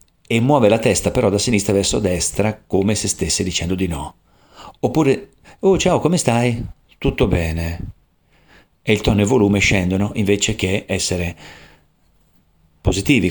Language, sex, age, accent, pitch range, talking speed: Italian, male, 40-59, native, 95-110 Hz, 150 wpm